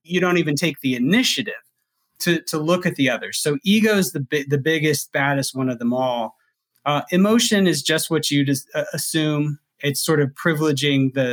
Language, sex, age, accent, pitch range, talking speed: English, male, 30-49, American, 125-155 Hz, 190 wpm